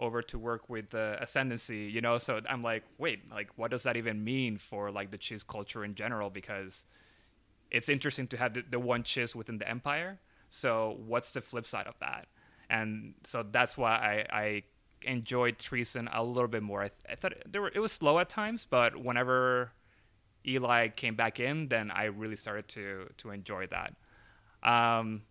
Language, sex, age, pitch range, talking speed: English, male, 20-39, 110-145 Hz, 195 wpm